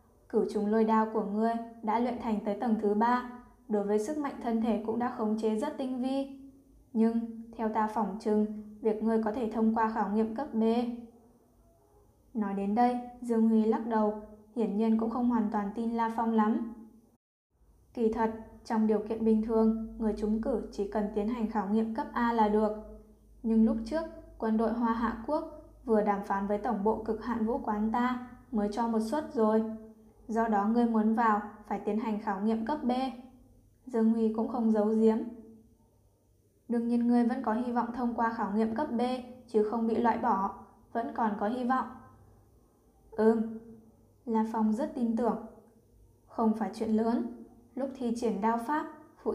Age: 10-29